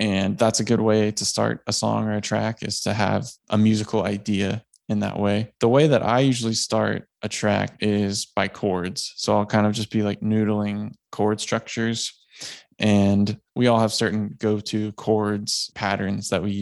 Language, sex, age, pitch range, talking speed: English, male, 20-39, 100-110 Hz, 190 wpm